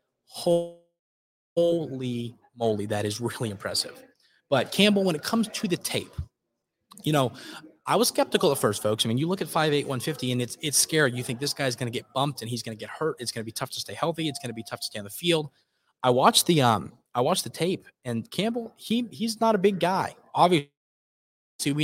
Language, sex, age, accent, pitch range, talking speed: English, male, 20-39, American, 115-155 Hz, 235 wpm